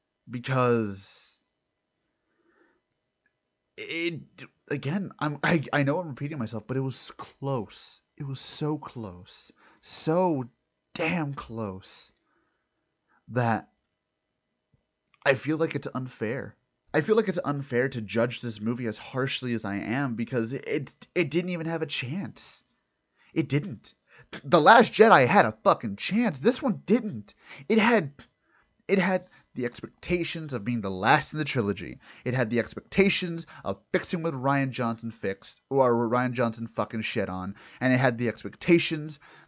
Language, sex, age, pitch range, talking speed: English, male, 30-49, 125-195 Hz, 145 wpm